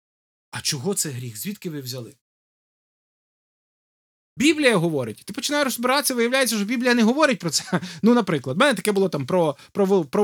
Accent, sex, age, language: native, male, 20-39, Ukrainian